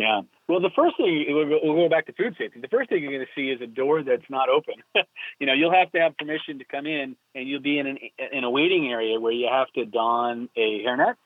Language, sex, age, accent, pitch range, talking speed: English, male, 40-59, American, 125-185 Hz, 265 wpm